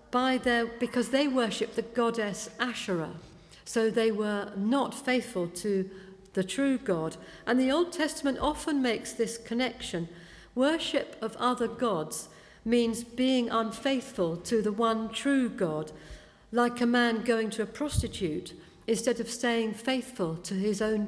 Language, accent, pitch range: English, British, 195-250 Hz